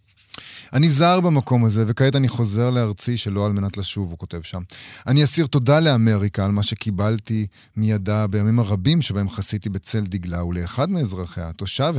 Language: Hebrew